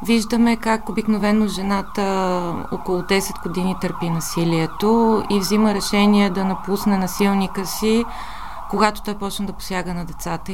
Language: Bulgarian